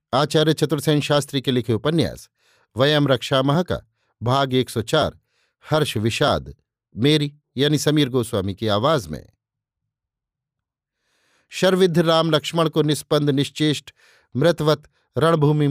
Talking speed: 105 wpm